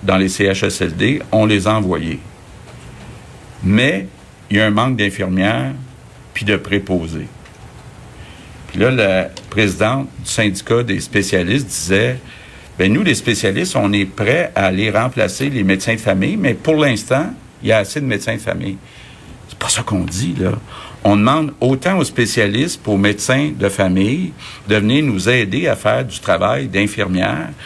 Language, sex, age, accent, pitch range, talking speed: French, male, 50-69, Canadian, 95-115 Hz, 165 wpm